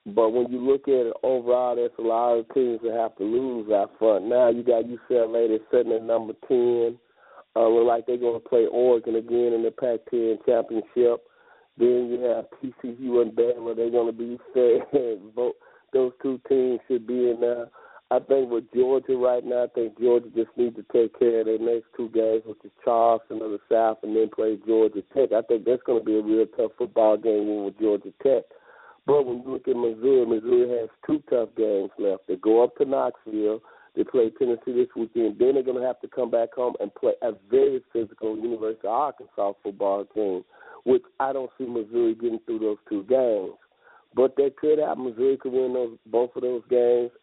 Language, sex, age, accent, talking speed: English, male, 40-59, American, 215 wpm